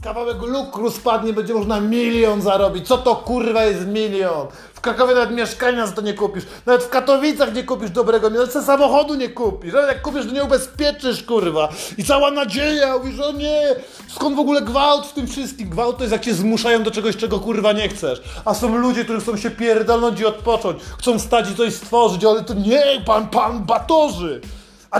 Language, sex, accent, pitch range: Polish, male, native, 200-250 Hz